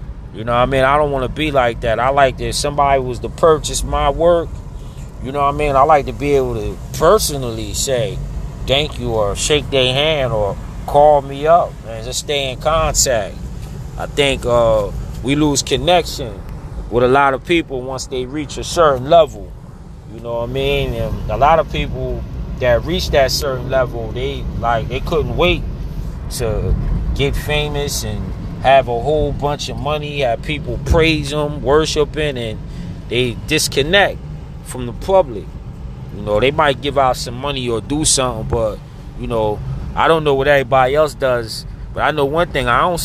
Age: 30-49